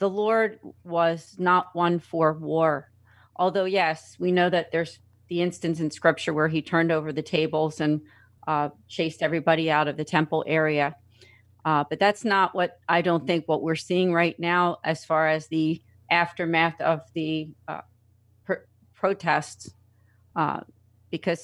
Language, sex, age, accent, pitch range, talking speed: English, female, 40-59, American, 150-170 Hz, 155 wpm